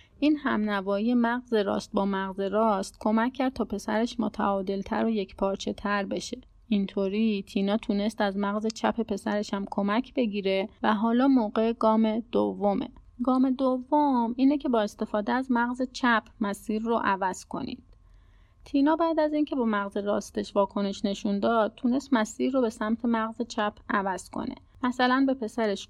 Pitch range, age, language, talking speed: 200-240 Hz, 30-49, Persian, 155 wpm